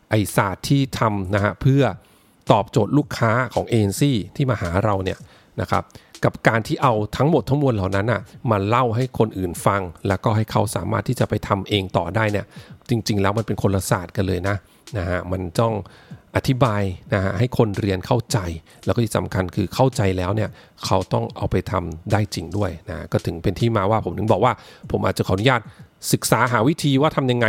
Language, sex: English, male